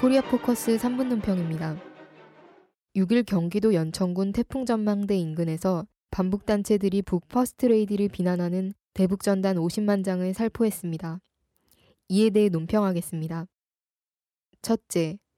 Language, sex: Korean, female